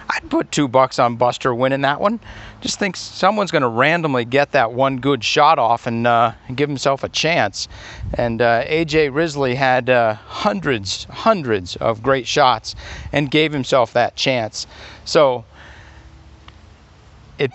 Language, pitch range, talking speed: English, 100-145 Hz, 150 wpm